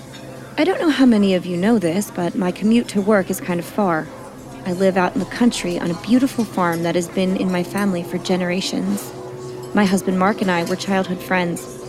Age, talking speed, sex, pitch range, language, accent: 30-49, 220 wpm, female, 175-210 Hz, English, American